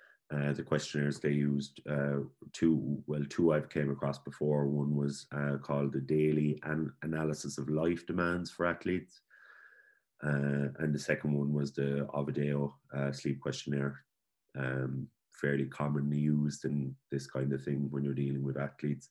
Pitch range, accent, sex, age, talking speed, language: 70-75 Hz, Irish, male, 30-49, 160 wpm, English